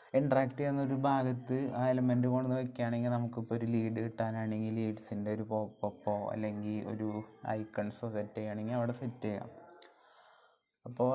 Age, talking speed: 20-39, 130 wpm